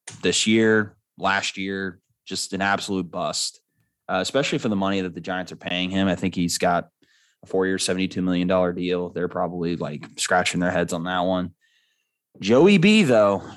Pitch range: 95-115 Hz